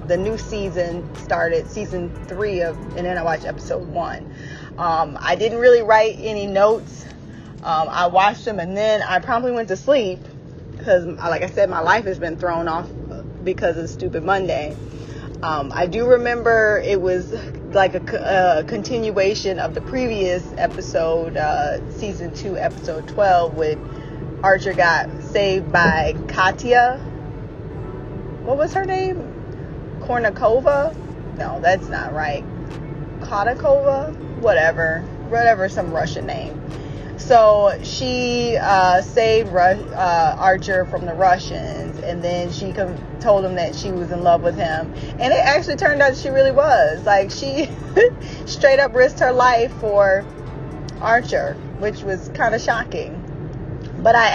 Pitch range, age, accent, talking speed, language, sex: 160-215 Hz, 20-39, American, 145 wpm, English, female